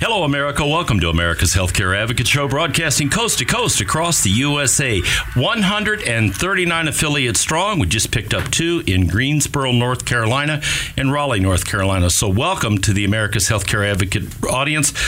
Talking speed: 155 wpm